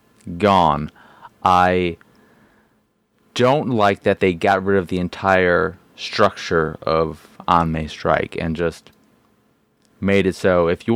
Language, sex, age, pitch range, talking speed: English, male, 30-49, 85-105 Hz, 120 wpm